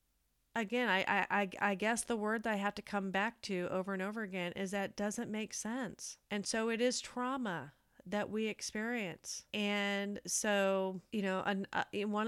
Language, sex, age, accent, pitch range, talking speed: English, female, 30-49, American, 175-215 Hz, 180 wpm